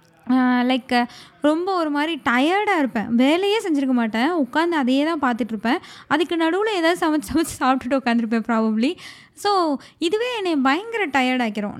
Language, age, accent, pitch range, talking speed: Tamil, 20-39, native, 240-310 Hz, 130 wpm